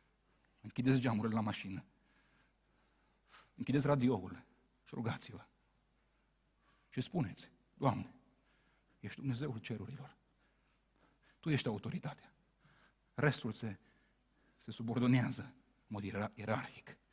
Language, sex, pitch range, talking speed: Romanian, male, 105-125 Hz, 85 wpm